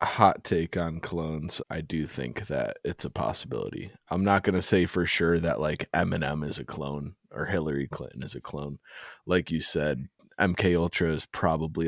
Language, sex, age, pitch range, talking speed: English, male, 20-39, 80-90 Hz, 180 wpm